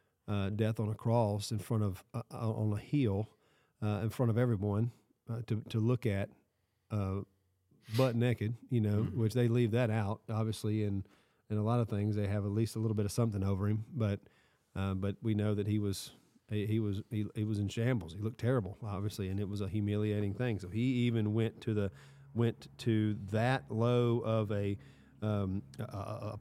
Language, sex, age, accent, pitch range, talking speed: English, male, 40-59, American, 105-120 Hz, 205 wpm